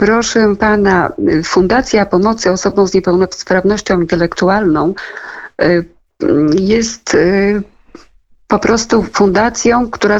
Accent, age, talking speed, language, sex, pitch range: native, 50-69, 75 wpm, Polish, female, 180-225 Hz